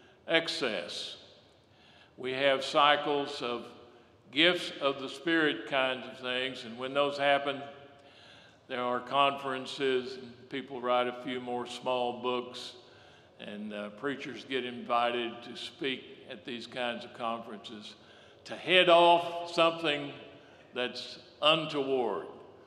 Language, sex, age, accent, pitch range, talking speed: English, male, 60-79, American, 125-145 Hz, 120 wpm